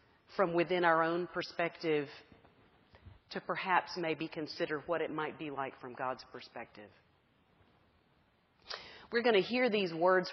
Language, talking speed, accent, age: English, 135 wpm, American, 40-59